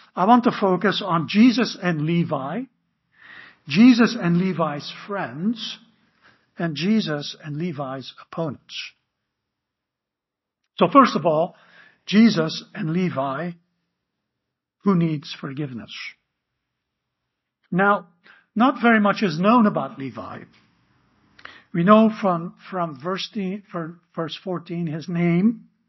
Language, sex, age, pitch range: English, male, 60-79, 165-220 Hz